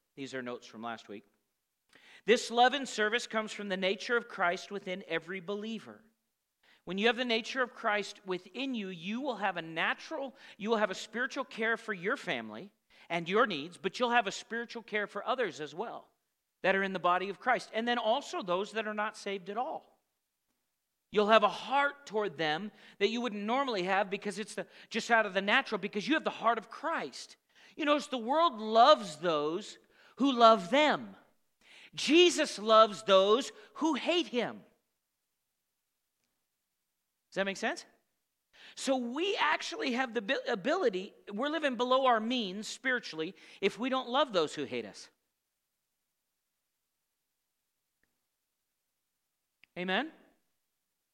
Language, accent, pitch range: English, American, 195-255 Hz